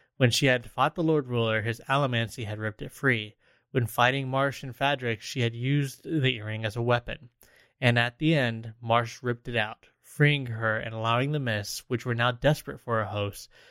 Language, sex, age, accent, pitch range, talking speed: English, male, 20-39, American, 115-140 Hz, 205 wpm